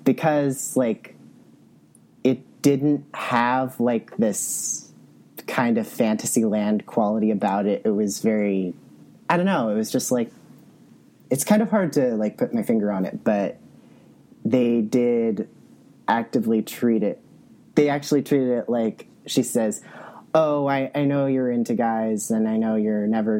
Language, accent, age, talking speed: English, American, 30-49, 155 wpm